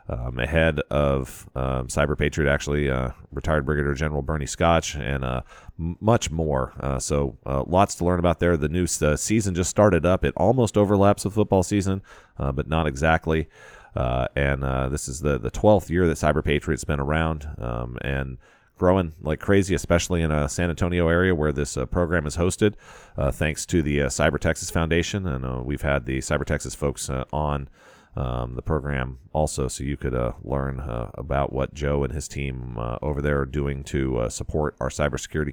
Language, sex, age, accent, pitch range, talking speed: English, male, 30-49, American, 70-85 Hz, 200 wpm